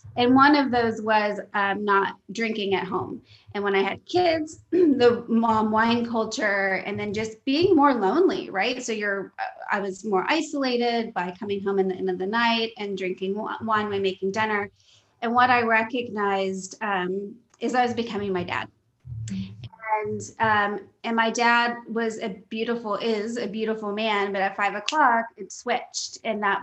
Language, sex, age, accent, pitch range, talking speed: English, female, 20-39, American, 195-235 Hz, 175 wpm